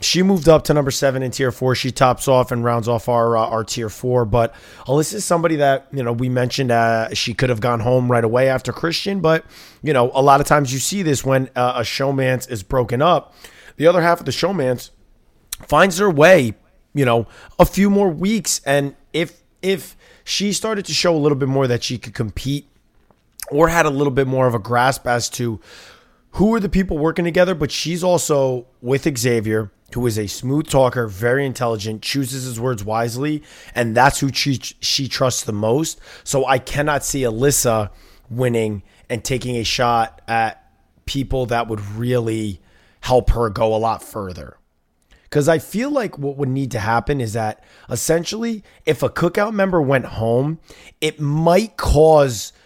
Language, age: English, 30-49